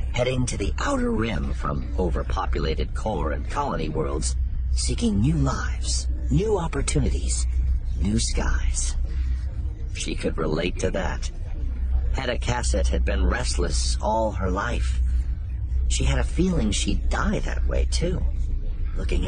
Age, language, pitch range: 50-69, English, 65-80 Hz